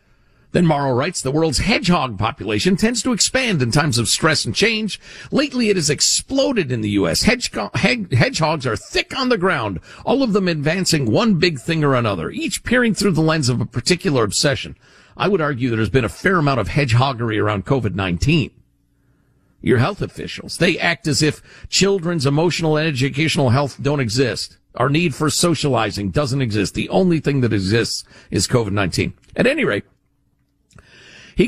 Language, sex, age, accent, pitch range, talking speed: English, male, 50-69, American, 130-195 Hz, 170 wpm